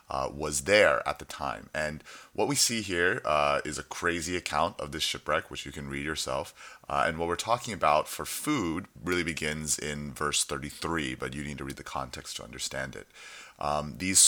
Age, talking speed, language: 30-49, 205 wpm, English